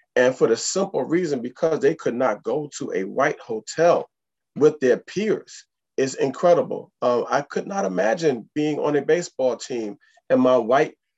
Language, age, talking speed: English, 30-49, 170 wpm